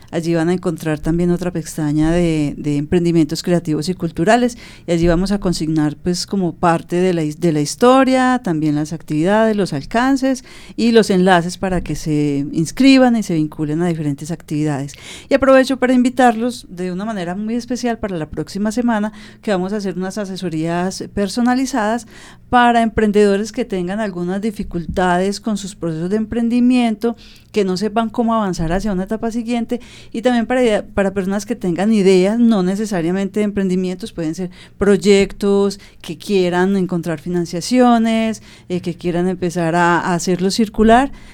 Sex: female